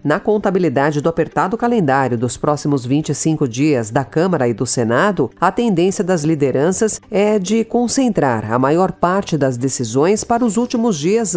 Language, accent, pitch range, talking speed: Portuguese, Brazilian, 140-205 Hz, 160 wpm